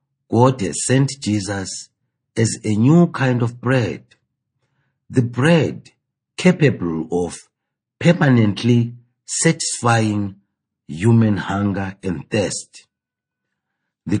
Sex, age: male, 50-69